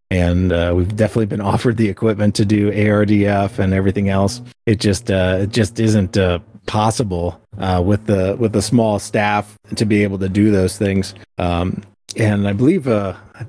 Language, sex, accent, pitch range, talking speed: English, male, American, 95-115 Hz, 185 wpm